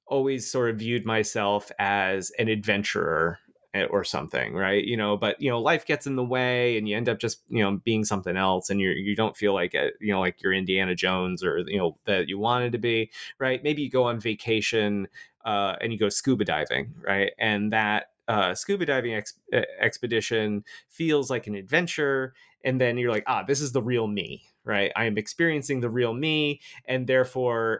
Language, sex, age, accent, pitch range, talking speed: English, male, 30-49, American, 105-130 Hz, 210 wpm